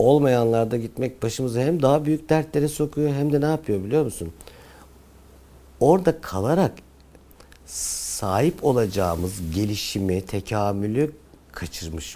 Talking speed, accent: 105 wpm, native